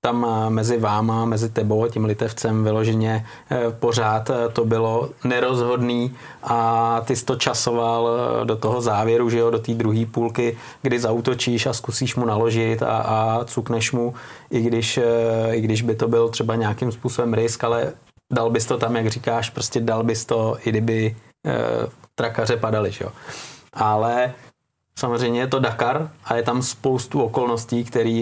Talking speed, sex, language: 155 wpm, male, Czech